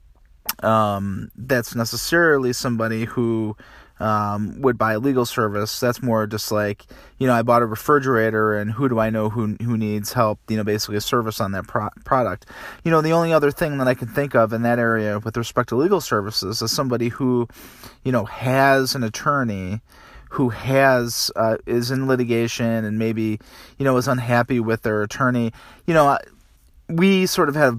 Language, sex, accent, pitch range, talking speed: English, male, American, 105-125 Hz, 190 wpm